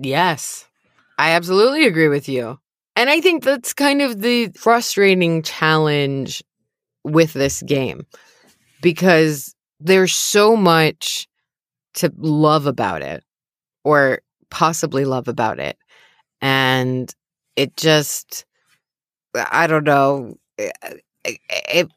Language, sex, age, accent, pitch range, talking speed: English, female, 20-39, American, 140-180 Hz, 105 wpm